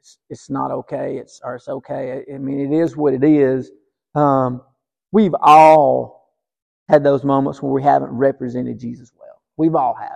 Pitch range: 140-180 Hz